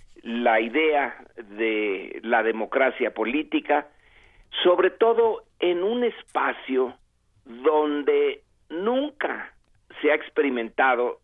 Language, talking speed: Spanish, 85 wpm